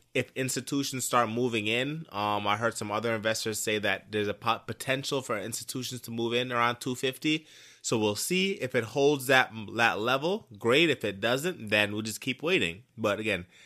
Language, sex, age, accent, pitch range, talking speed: English, male, 20-39, American, 110-130 Hz, 195 wpm